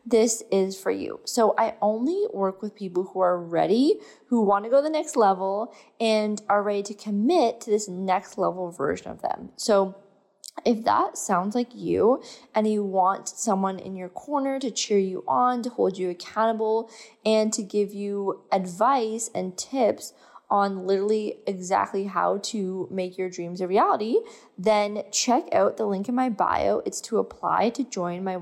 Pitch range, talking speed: 190-235 Hz, 180 wpm